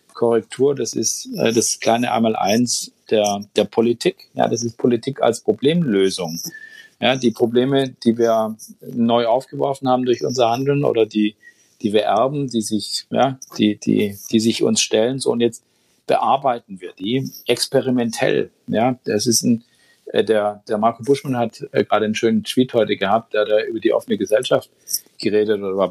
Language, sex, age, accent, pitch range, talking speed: German, male, 50-69, German, 110-135 Hz, 165 wpm